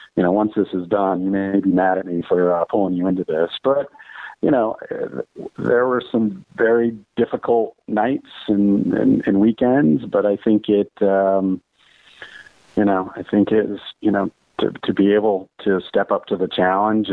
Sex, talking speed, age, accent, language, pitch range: male, 185 wpm, 40-59, American, English, 90-105 Hz